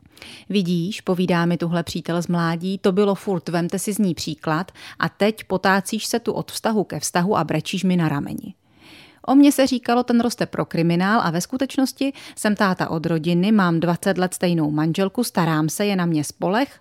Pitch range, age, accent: 165-215 Hz, 30-49, native